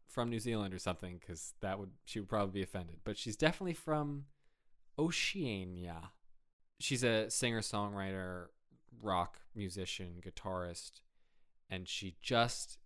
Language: English